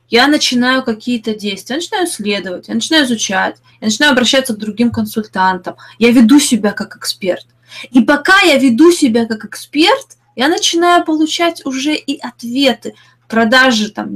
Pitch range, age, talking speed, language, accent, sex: 215-275 Hz, 20-39, 155 wpm, Russian, native, female